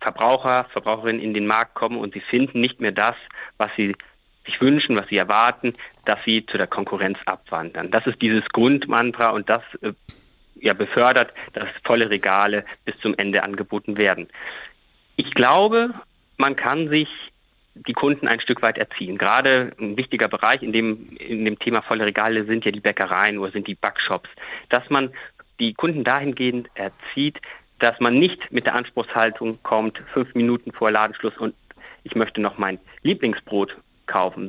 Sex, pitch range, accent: male, 110-135 Hz, German